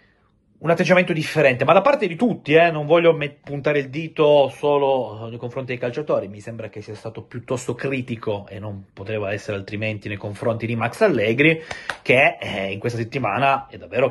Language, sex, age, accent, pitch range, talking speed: Italian, male, 30-49, native, 110-140 Hz, 185 wpm